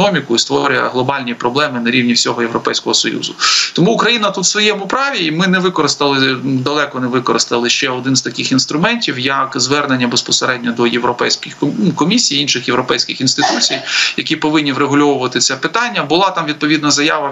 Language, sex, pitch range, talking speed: Ukrainian, male, 130-150 Hz, 165 wpm